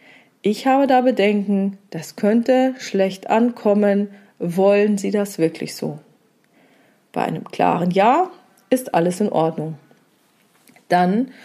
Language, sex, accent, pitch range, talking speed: German, female, German, 185-220 Hz, 115 wpm